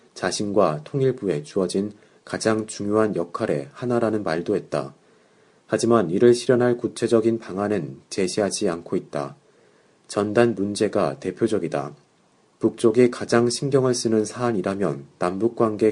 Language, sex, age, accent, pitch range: Korean, male, 30-49, native, 95-115 Hz